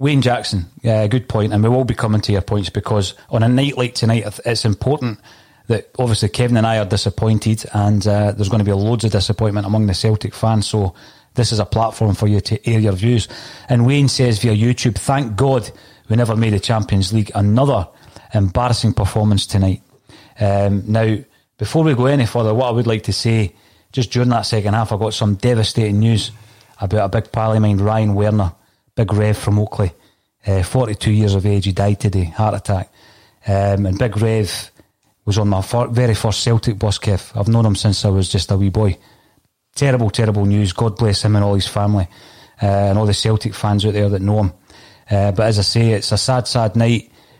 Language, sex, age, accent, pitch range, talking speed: English, male, 30-49, British, 100-115 Hz, 215 wpm